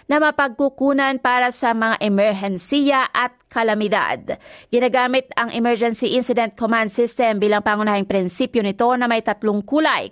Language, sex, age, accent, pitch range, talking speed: Filipino, female, 20-39, native, 205-250 Hz, 130 wpm